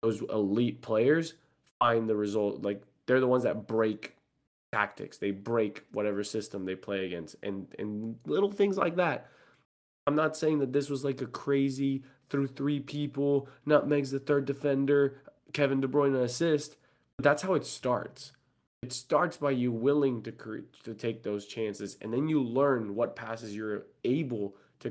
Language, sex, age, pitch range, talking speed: English, male, 20-39, 105-135 Hz, 170 wpm